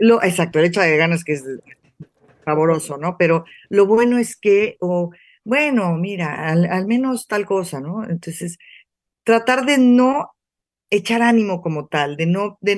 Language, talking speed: Spanish, 170 wpm